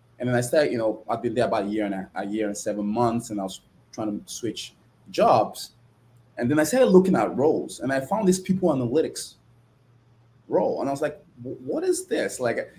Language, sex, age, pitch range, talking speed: English, male, 20-39, 115-150 Hz, 225 wpm